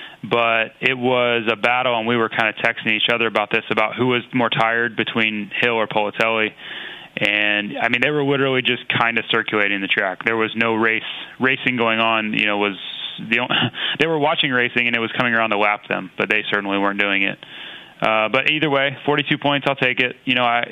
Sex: male